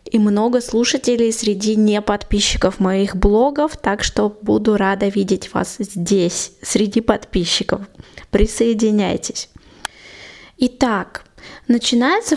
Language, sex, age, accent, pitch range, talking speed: Russian, female, 20-39, native, 210-250 Hz, 95 wpm